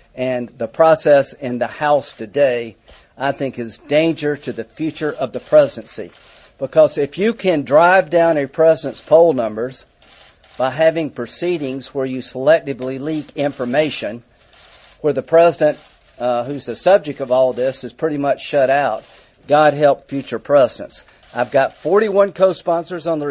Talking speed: 155 wpm